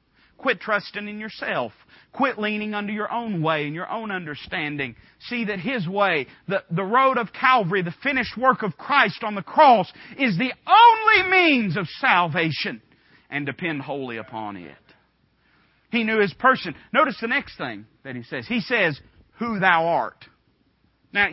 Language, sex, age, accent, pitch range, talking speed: English, male, 40-59, American, 170-260 Hz, 165 wpm